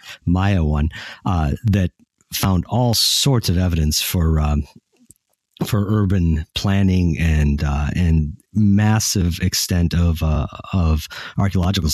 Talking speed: 115 wpm